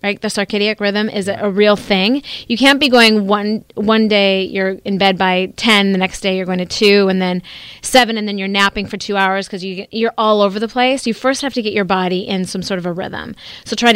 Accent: American